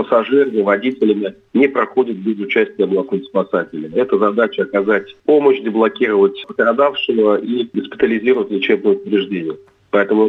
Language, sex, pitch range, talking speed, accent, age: Russian, male, 105-135 Hz, 110 wpm, native, 40-59